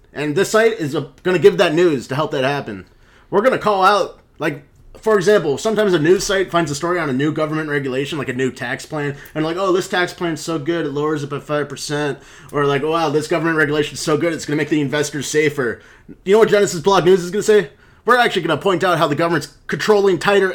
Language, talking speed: English, 260 wpm